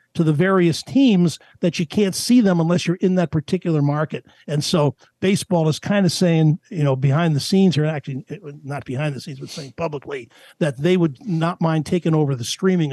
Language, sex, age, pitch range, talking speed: English, male, 50-69, 140-185 Hz, 210 wpm